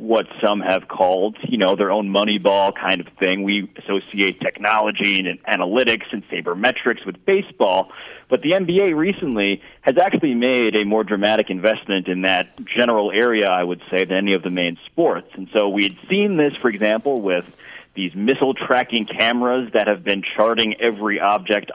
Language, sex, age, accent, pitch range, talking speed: English, male, 40-59, American, 95-120 Hz, 175 wpm